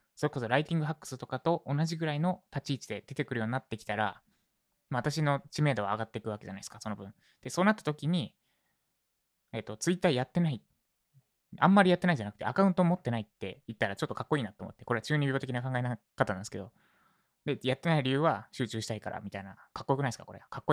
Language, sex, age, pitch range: Japanese, male, 20-39, 110-155 Hz